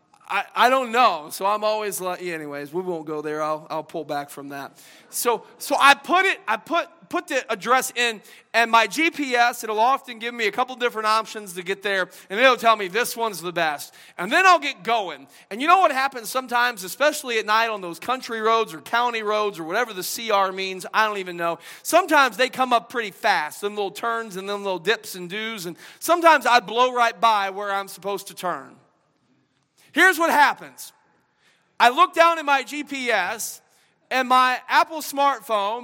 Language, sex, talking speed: English, male, 205 wpm